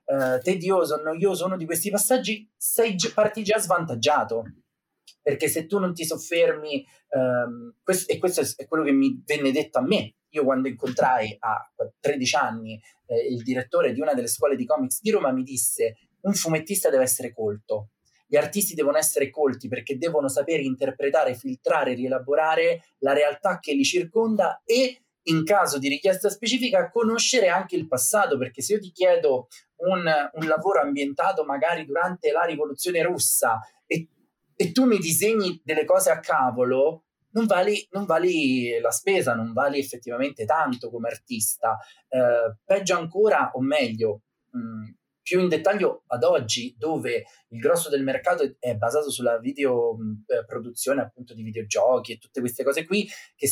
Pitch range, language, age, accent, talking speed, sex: 135-205 Hz, Italian, 30-49, native, 155 wpm, male